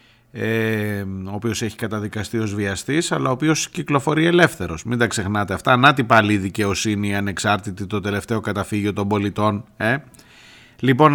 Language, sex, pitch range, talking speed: Greek, male, 105-135 Hz, 150 wpm